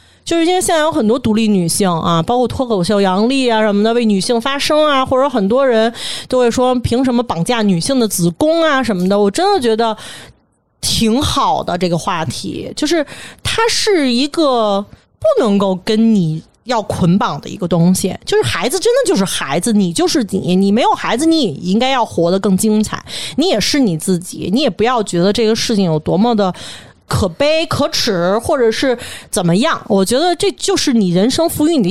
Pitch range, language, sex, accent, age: 185-275 Hz, Chinese, female, native, 30-49